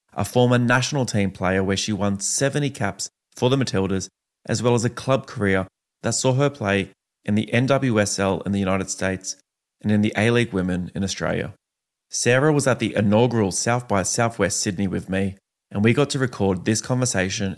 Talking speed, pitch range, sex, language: 190 wpm, 95-120 Hz, male, English